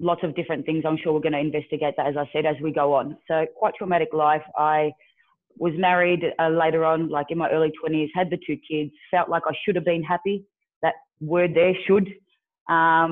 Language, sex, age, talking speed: English, female, 20-39, 225 wpm